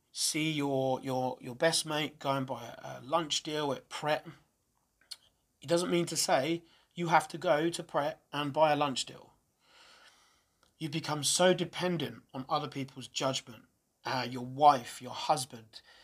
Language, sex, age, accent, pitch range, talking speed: English, male, 30-49, British, 130-160 Hz, 160 wpm